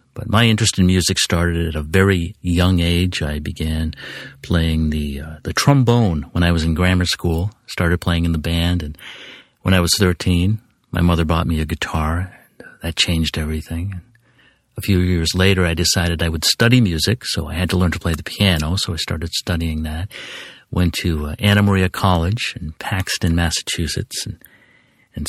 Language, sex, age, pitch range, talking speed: English, male, 50-69, 85-100 Hz, 190 wpm